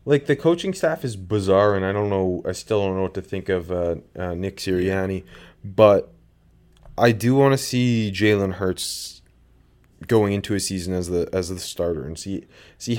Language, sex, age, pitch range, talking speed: English, male, 20-39, 90-110 Hz, 195 wpm